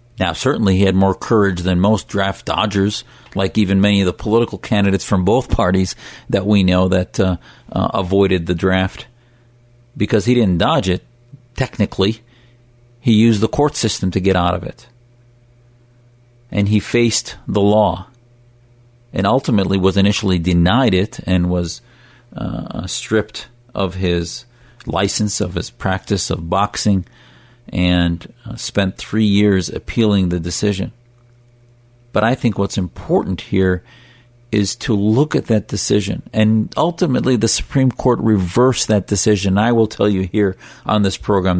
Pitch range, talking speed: 95-120 Hz, 150 wpm